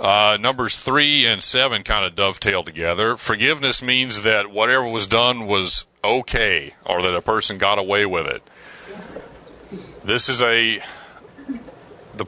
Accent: American